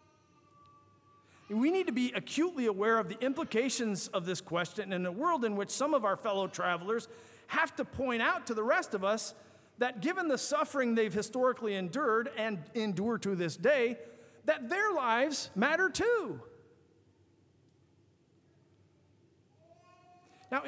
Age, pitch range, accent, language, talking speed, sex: 50-69, 190-260 Hz, American, English, 140 wpm, male